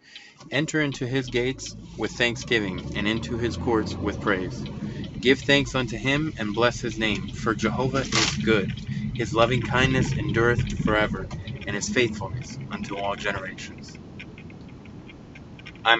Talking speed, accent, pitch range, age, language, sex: 135 wpm, American, 105-120 Hz, 30-49, English, male